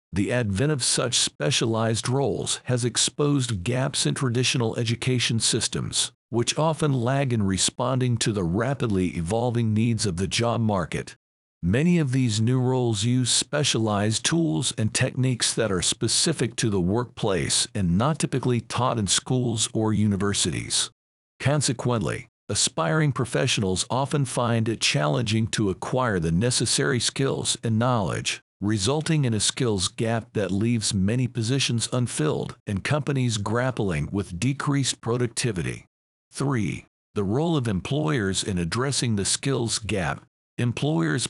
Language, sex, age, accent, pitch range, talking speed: English, male, 50-69, American, 105-135 Hz, 135 wpm